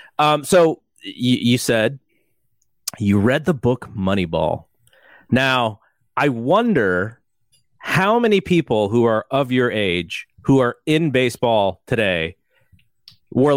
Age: 30-49